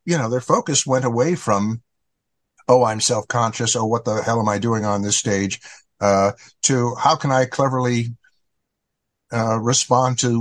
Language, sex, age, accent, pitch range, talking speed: English, male, 50-69, American, 115-140 Hz, 165 wpm